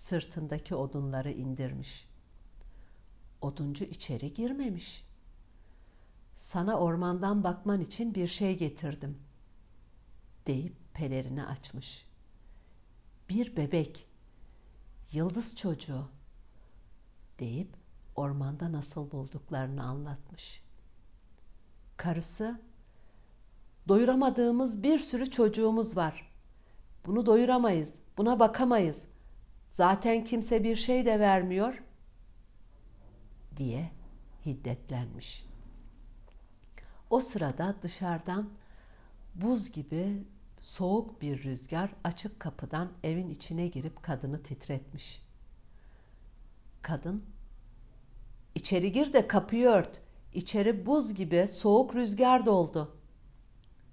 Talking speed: 80 wpm